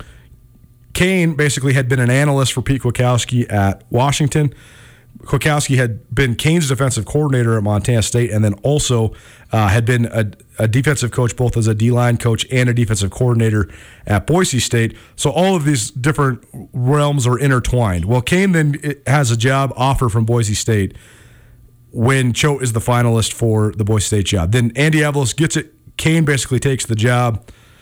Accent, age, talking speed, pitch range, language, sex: American, 30-49, 175 wpm, 110-135 Hz, English, male